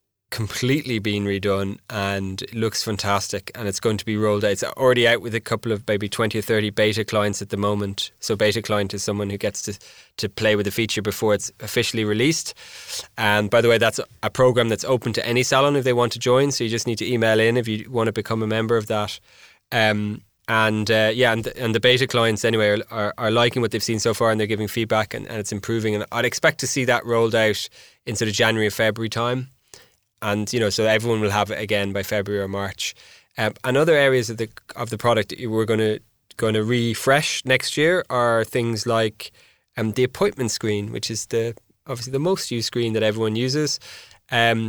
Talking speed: 230 wpm